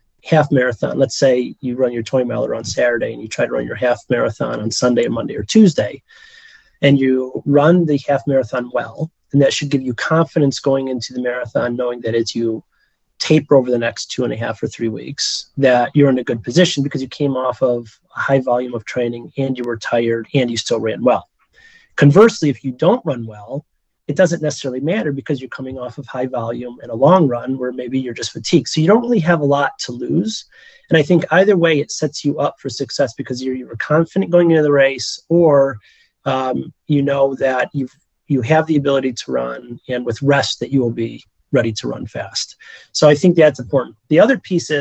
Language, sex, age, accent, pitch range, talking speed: English, male, 30-49, American, 125-155 Hz, 220 wpm